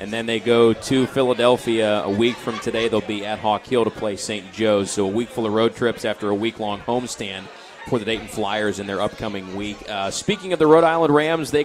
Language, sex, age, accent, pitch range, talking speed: English, male, 30-49, American, 110-140 Hz, 240 wpm